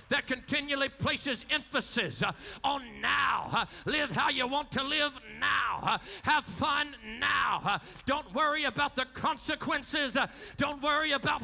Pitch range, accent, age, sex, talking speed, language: 280-320 Hz, American, 40-59, male, 150 wpm, English